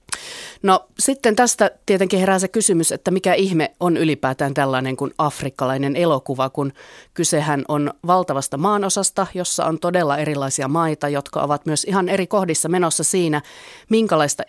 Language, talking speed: Finnish, 145 wpm